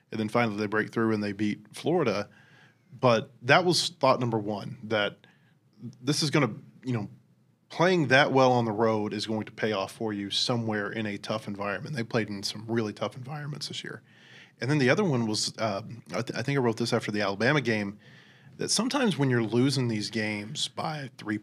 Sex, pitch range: male, 110-130 Hz